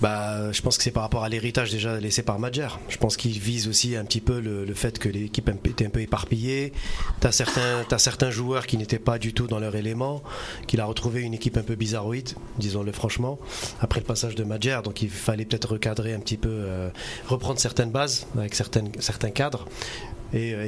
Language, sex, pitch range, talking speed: French, male, 110-130 Hz, 220 wpm